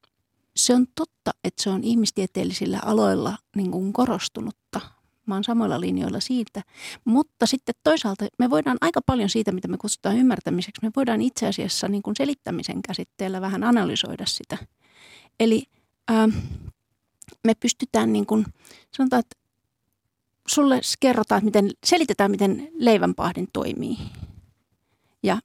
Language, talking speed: Finnish, 130 wpm